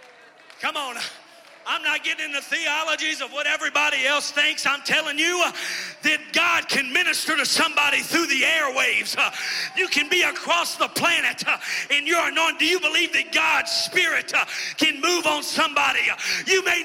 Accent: American